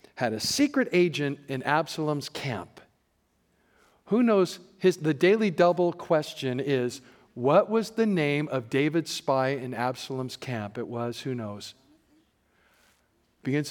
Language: English